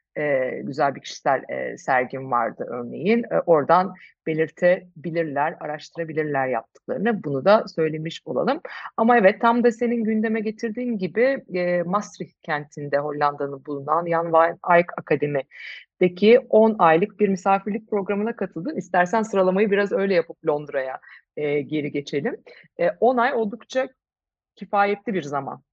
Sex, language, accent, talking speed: female, Turkish, native, 130 wpm